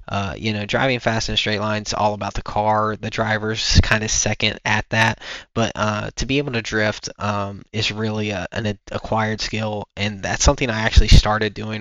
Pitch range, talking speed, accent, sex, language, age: 105-115 Hz, 210 wpm, American, male, English, 20-39